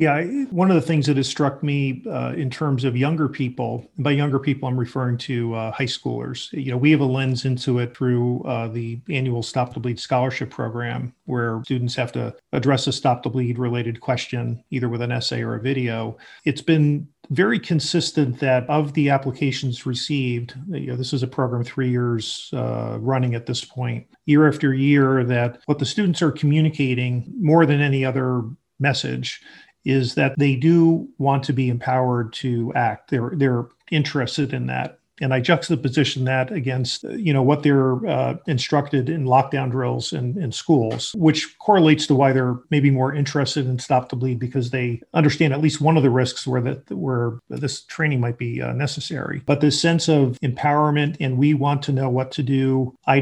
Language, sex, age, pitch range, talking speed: English, male, 40-59, 125-145 Hz, 190 wpm